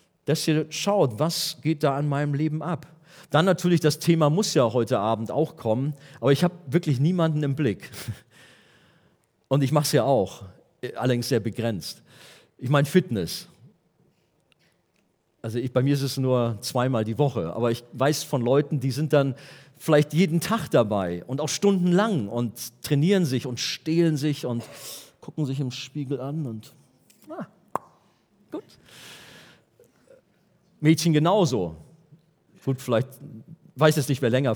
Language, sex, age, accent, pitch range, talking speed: German, male, 40-59, German, 125-170 Hz, 155 wpm